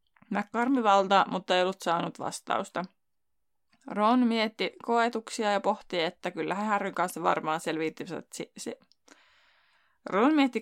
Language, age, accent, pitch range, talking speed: Finnish, 20-39, native, 180-230 Hz, 115 wpm